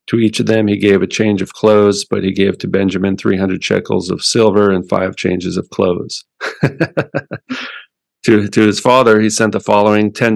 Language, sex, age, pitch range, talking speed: English, male, 40-59, 95-105 Hz, 190 wpm